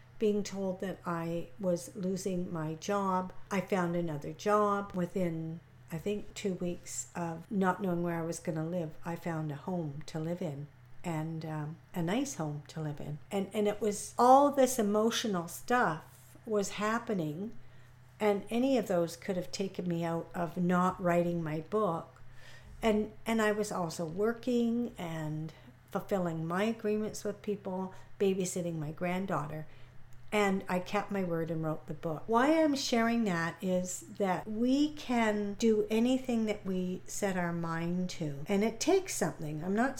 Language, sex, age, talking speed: English, female, 60-79, 165 wpm